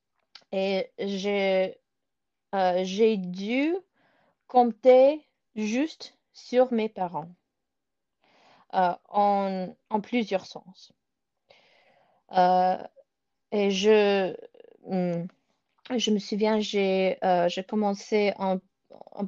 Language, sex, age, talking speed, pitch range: French, female, 30-49, 85 wpm, 185-230 Hz